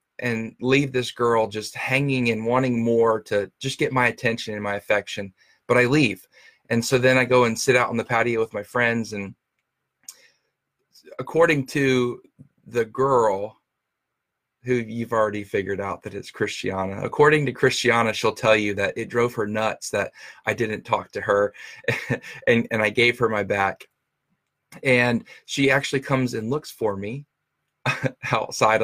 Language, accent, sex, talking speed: English, American, male, 165 wpm